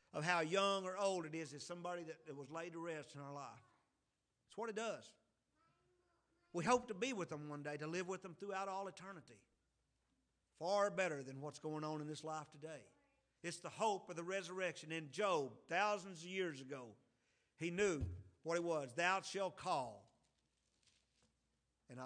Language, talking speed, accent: English, 180 wpm, American